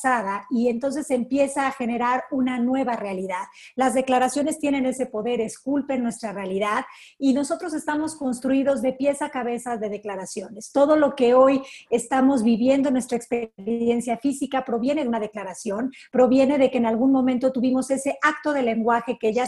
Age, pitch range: 40-59, 230-275 Hz